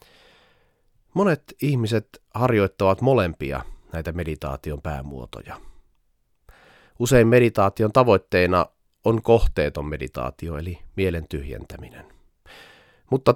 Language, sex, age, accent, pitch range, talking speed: Finnish, male, 30-49, native, 80-115 Hz, 75 wpm